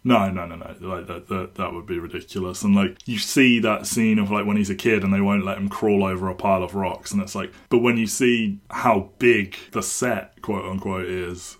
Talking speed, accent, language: 245 wpm, British, English